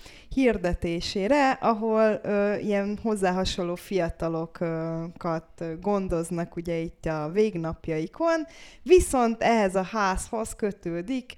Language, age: Hungarian, 20-39